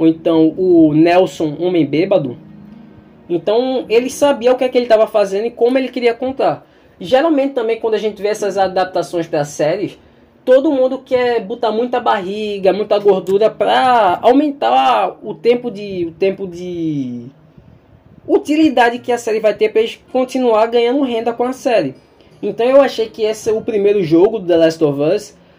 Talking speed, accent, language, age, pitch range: 175 wpm, Brazilian, Portuguese, 20-39, 185-255 Hz